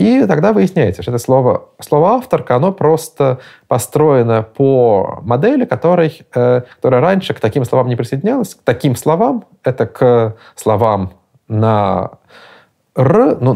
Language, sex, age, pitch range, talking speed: Russian, male, 20-39, 105-140 Hz, 135 wpm